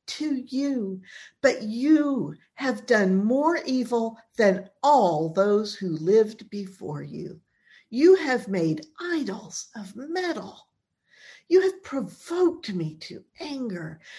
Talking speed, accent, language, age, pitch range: 115 wpm, American, English, 50-69, 170-240 Hz